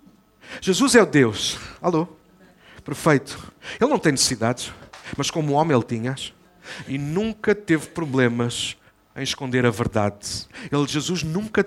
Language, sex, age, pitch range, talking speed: Portuguese, male, 50-69, 110-170 Hz, 135 wpm